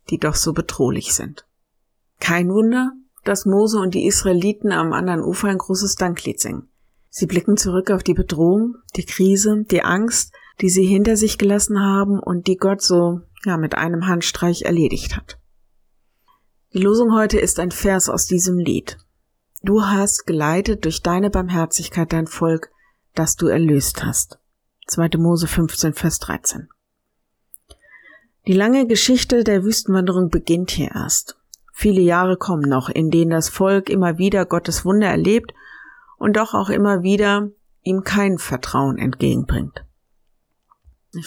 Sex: female